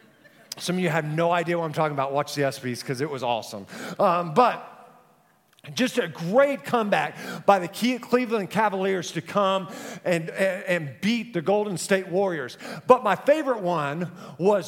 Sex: male